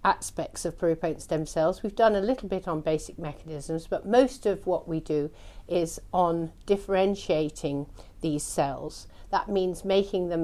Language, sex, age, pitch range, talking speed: English, female, 50-69, 160-205 Hz, 160 wpm